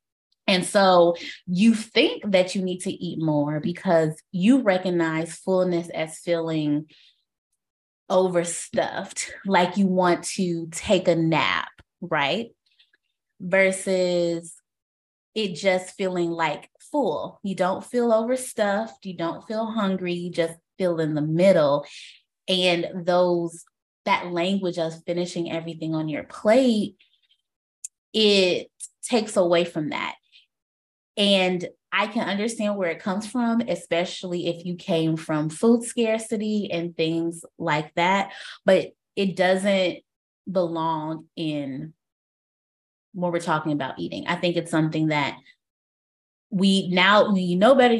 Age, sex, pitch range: 20-39, female, 165-195 Hz